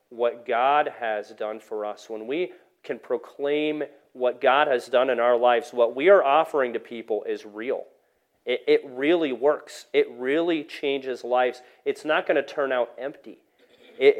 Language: English